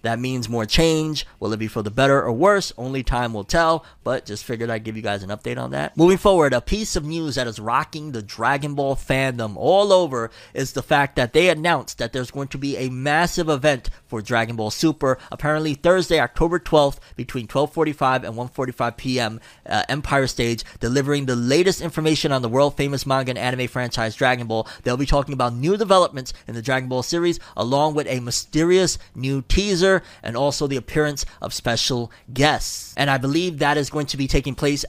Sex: male